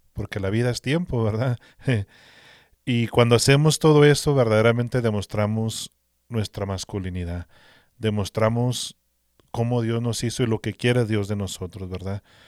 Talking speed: 135 wpm